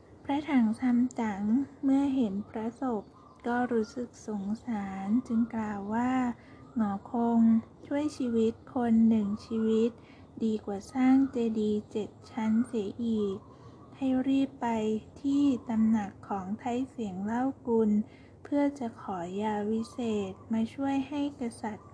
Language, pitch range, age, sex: Thai, 220-250 Hz, 20-39, female